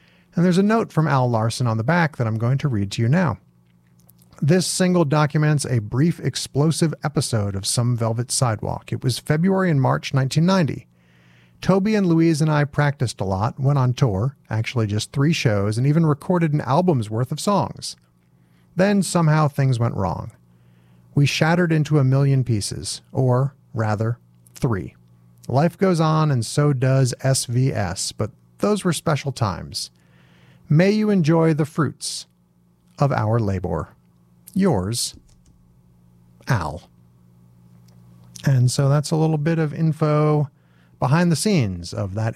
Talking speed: 150 wpm